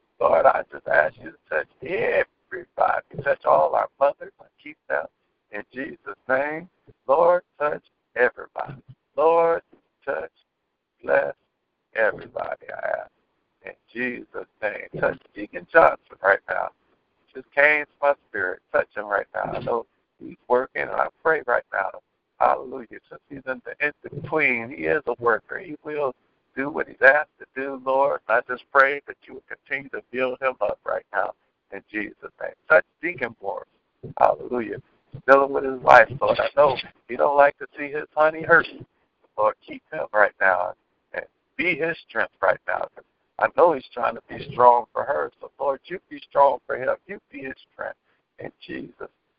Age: 60-79